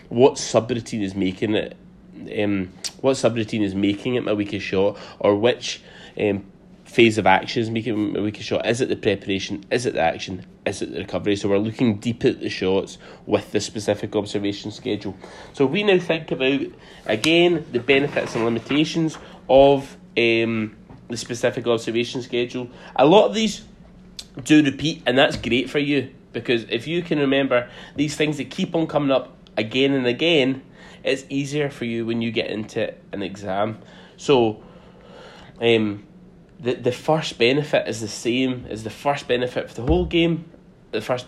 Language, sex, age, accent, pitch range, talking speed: English, male, 20-39, British, 110-150 Hz, 175 wpm